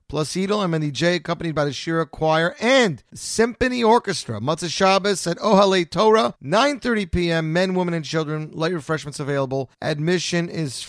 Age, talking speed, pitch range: 30-49, 145 wpm, 120-170 Hz